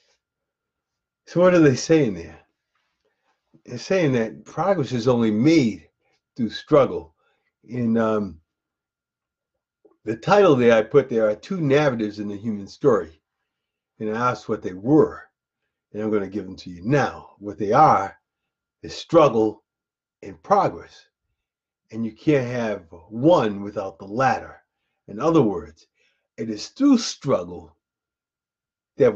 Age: 50-69